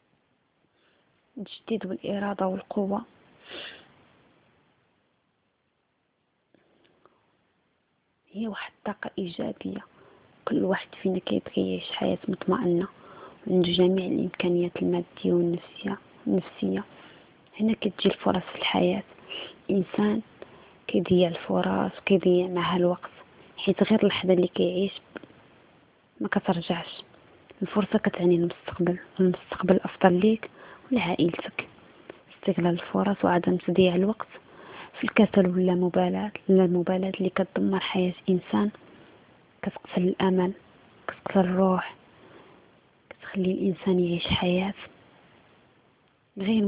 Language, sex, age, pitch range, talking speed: Arabic, female, 20-39, 180-200 Hz, 85 wpm